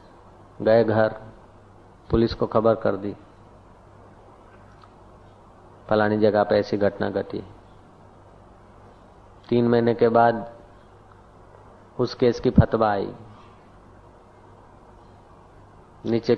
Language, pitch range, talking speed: Hindi, 100-125 Hz, 85 wpm